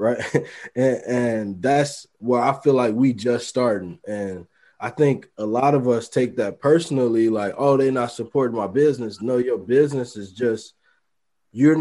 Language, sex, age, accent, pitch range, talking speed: English, male, 20-39, American, 115-145 Hz, 175 wpm